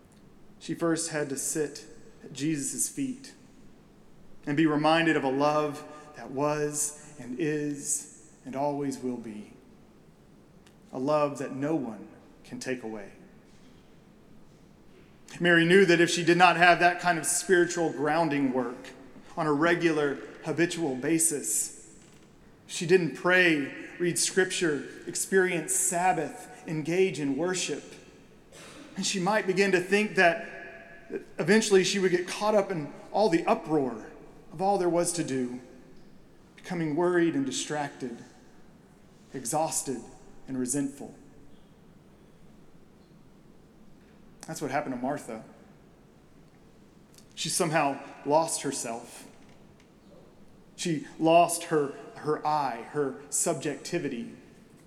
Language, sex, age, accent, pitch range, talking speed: English, male, 40-59, American, 145-180 Hz, 115 wpm